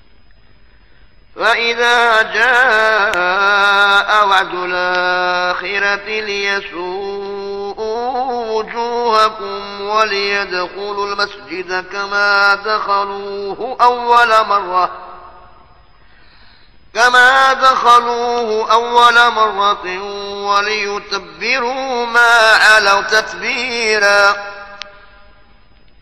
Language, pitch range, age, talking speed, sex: Arabic, 200-245 Hz, 30-49, 45 wpm, male